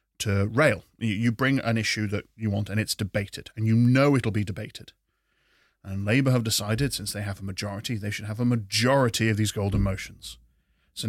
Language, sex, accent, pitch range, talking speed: English, male, British, 100-125 Hz, 200 wpm